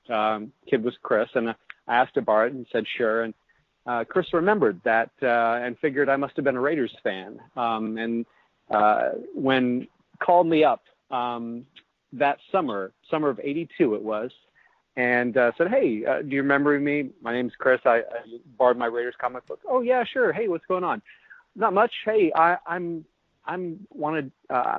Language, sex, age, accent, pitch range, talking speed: English, male, 40-59, American, 115-145 Hz, 190 wpm